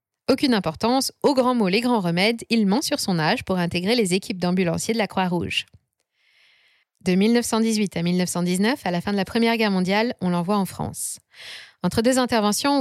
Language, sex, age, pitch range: French, female, 20-39, 180-225 Hz